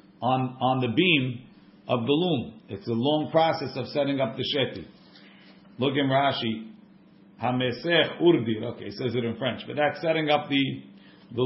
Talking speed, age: 170 wpm, 50-69